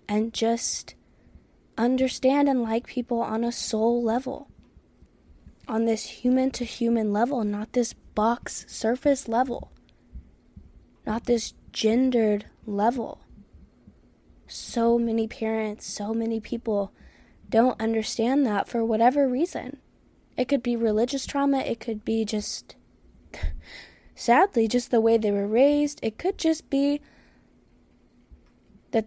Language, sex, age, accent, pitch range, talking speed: English, female, 10-29, American, 215-250 Hz, 120 wpm